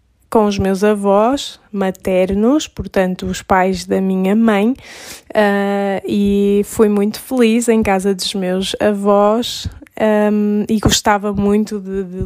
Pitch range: 195-220 Hz